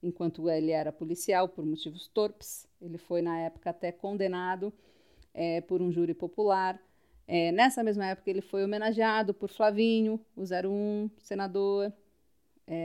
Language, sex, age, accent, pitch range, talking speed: Portuguese, female, 40-59, Brazilian, 180-225 Hz, 145 wpm